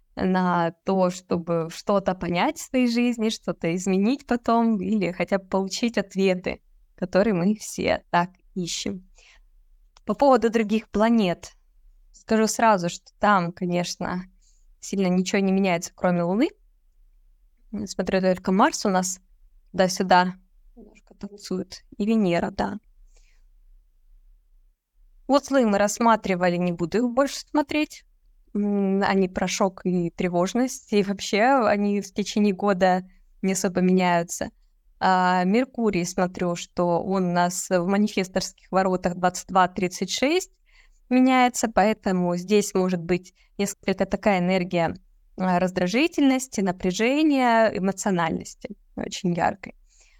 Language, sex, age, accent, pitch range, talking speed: Russian, female, 20-39, native, 180-220 Hz, 115 wpm